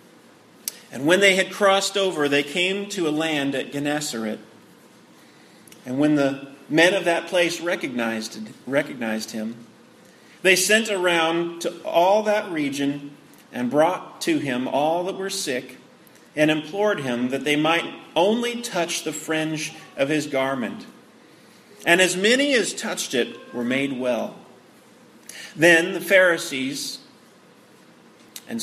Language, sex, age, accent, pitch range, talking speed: English, male, 40-59, American, 145-220 Hz, 130 wpm